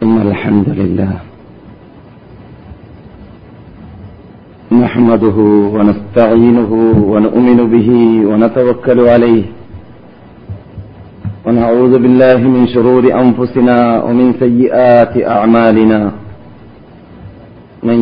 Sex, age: male, 50-69